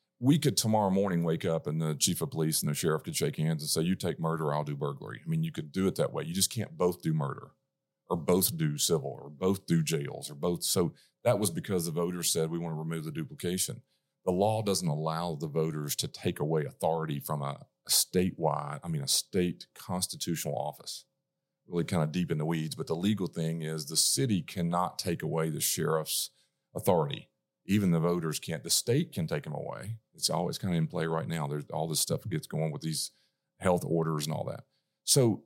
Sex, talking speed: male, 230 wpm